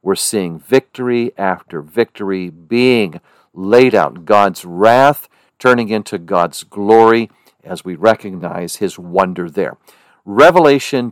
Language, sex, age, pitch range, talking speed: English, male, 50-69, 100-130 Hz, 115 wpm